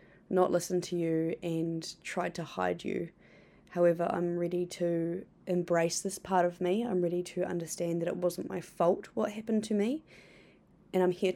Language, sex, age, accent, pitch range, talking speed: English, female, 20-39, Australian, 170-180 Hz, 180 wpm